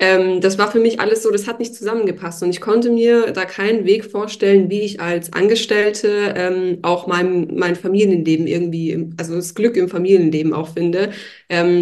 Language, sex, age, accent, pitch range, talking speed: German, female, 20-39, German, 175-200 Hz, 185 wpm